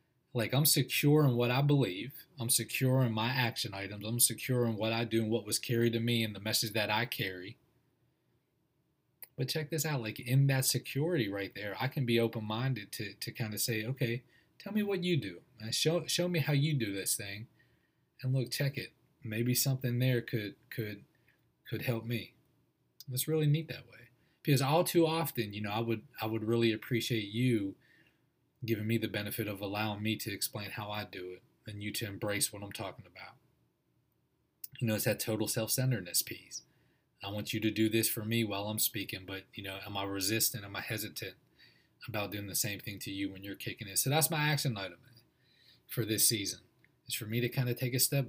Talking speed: 210 wpm